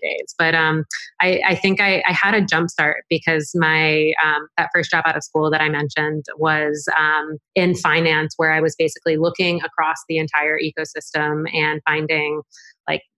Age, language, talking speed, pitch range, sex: 20-39, English, 180 wpm, 155-175 Hz, female